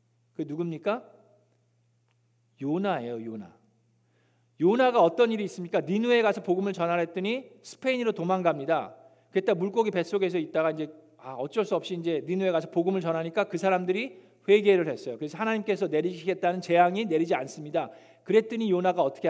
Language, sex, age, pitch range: Korean, male, 40-59, 125-195 Hz